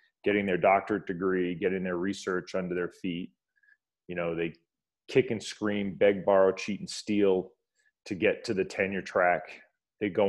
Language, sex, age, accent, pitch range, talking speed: English, male, 30-49, American, 85-105 Hz, 170 wpm